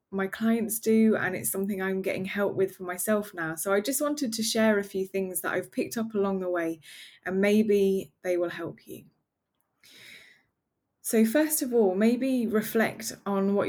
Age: 20-39